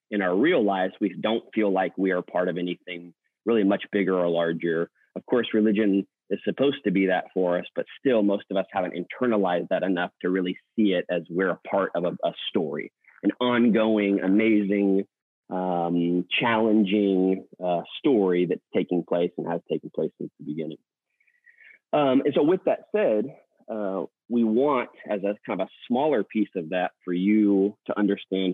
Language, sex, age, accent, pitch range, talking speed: English, male, 30-49, American, 90-110 Hz, 185 wpm